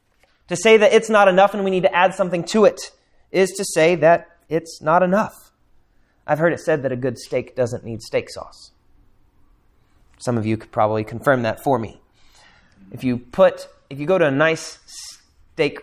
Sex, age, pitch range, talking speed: male, 30-49, 130-210 Hz, 195 wpm